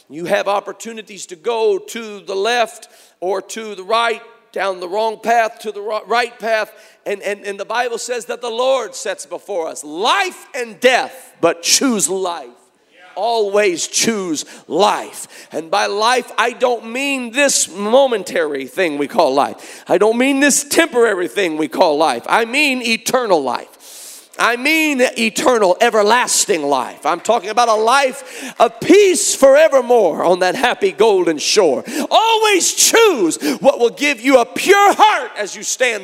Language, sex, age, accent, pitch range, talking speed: English, male, 40-59, American, 210-295 Hz, 160 wpm